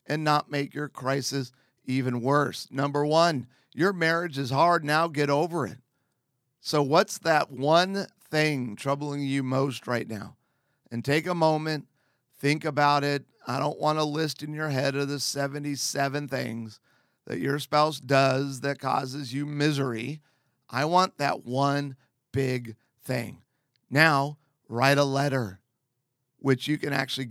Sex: male